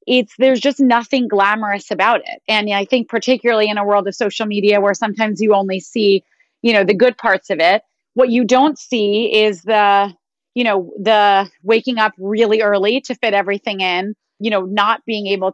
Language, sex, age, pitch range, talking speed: English, female, 30-49, 200-235 Hz, 195 wpm